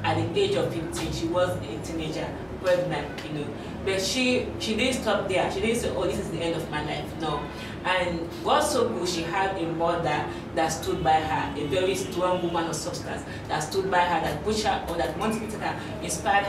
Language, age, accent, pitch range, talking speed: English, 30-49, Nigerian, 165-205 Hz, 220 wpm